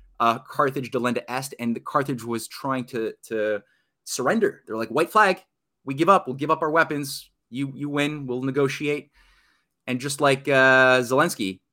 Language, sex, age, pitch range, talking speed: English, male, 30-49, 115-145 Hz, 175 wpm